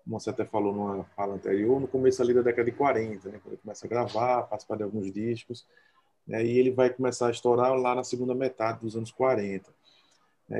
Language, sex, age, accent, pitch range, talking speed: Portuguese, male, 20-39, Brazilian, 110-130 Hz, 225 wpm